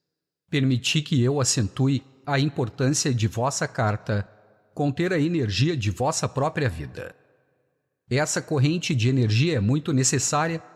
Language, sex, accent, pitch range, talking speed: Spanish, male, Brazilian, 115-150 Hz, 130 wpm